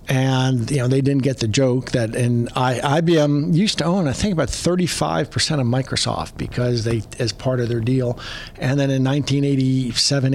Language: English